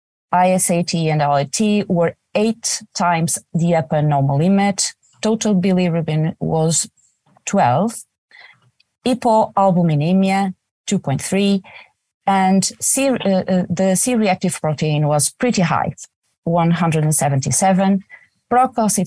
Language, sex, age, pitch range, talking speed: English, female, 30-49, 150-215 Hz, 85 wpm